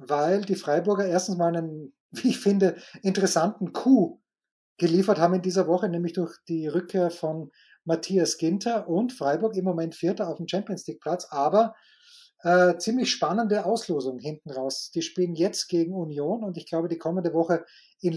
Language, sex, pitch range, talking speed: German, male, 170-205 Hz, 165 wpm